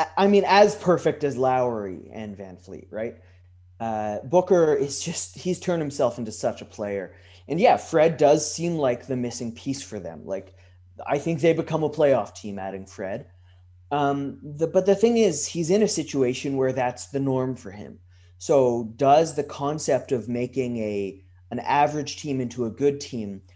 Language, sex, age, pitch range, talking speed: English, male, 20-39, 95-160 Hz, 185 wpm